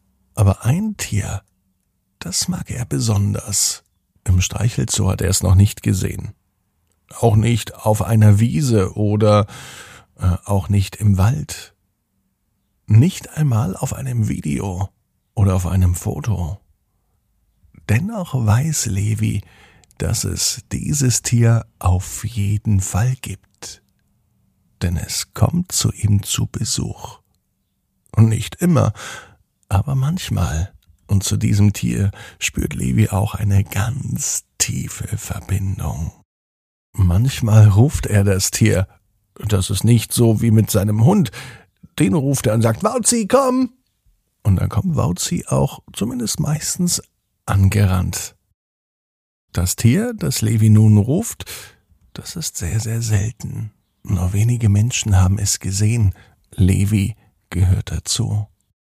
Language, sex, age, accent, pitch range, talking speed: German, male, 50-69, German, 95-115 Hz, 120 wpm